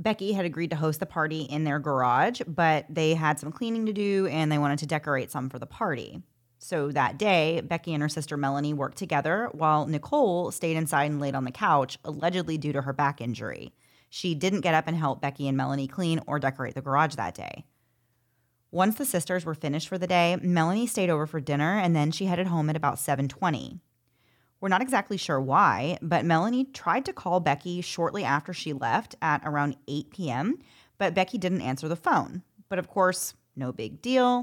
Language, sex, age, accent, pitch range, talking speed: English, female, 30-49, American, 140-180 Hz, 205 wpm